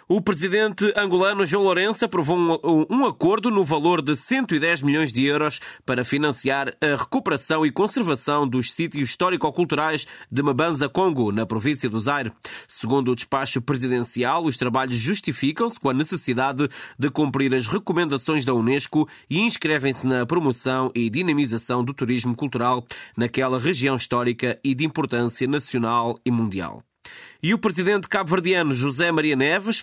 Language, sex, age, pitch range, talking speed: Portuguese, male, 20-39, 130-170 Hz, 145 wpm